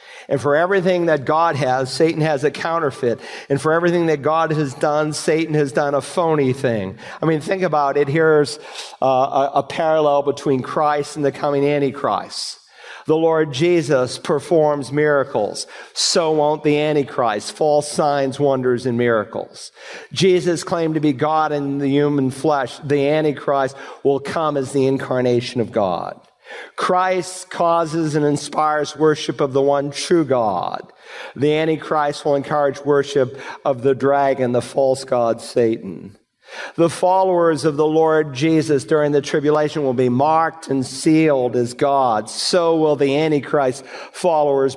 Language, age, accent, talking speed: English, 50-69, American, 155 wpm